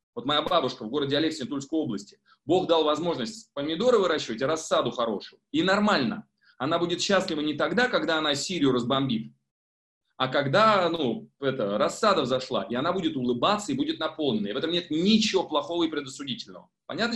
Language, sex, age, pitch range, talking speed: Russian, male, 30-49, 130-190 Hz, 170 wpm